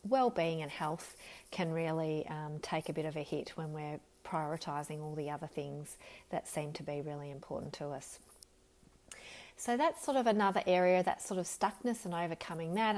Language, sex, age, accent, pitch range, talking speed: English, female, 30-49, Australian, 160-195 Hz, 185 wpm